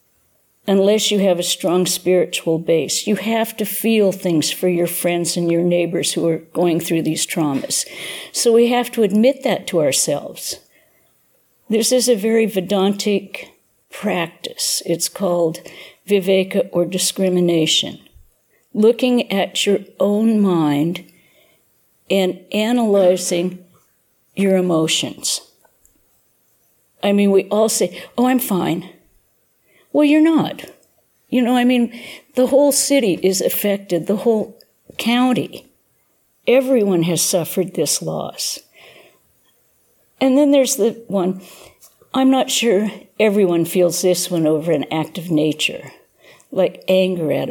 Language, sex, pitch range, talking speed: English, female, 175-225 Hz, 125 wpm